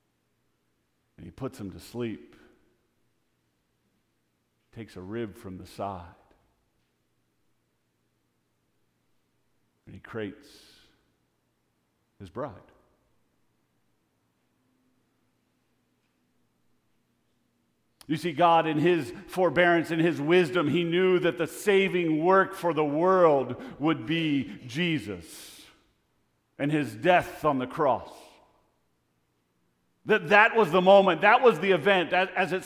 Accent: American